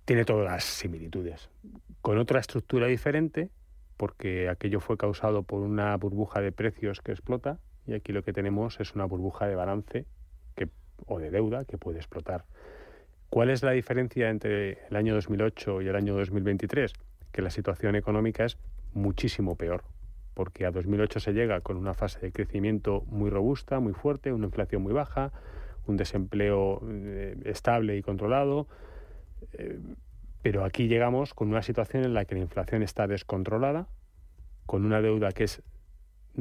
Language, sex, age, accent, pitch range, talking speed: Spanish, male, 30-49, Spanish, 100-115 Hz, 160 wpm